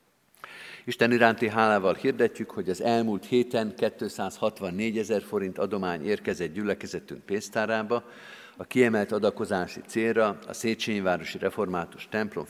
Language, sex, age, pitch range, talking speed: Hungarian, male, 50-69, 95-115 Hz, 110 wpm